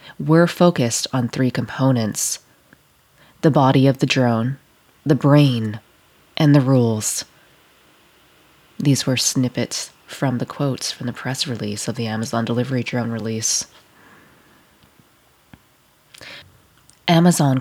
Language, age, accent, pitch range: English, 20-39, American, 125-150 Hz